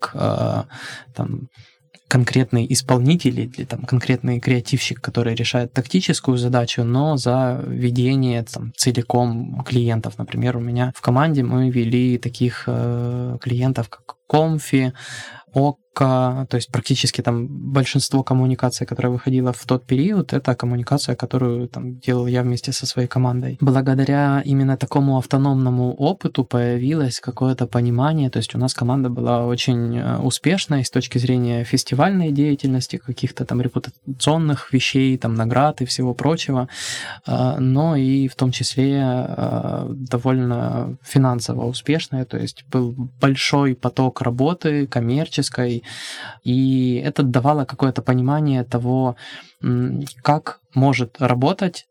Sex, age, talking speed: male, 20-39, 115 wpm